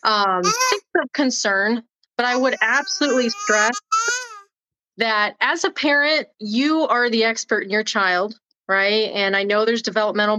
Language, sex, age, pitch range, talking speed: English, female, 20-39, 205-250 Hz, 145 wpm